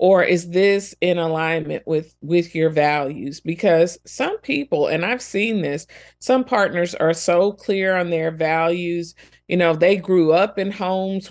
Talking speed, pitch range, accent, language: 165 wpm, 160-190 Hz, American, English